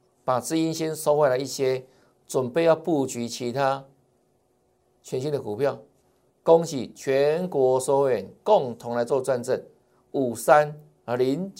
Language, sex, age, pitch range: Chinese, male, 60-79, 140-200 Hz